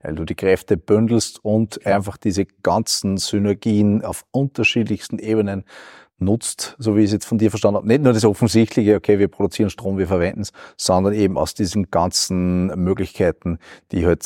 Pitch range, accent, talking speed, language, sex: 100-115 Hz, Austrian, 175 wpm, German, male